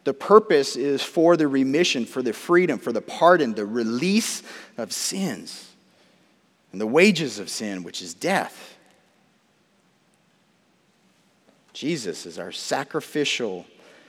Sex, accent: male, American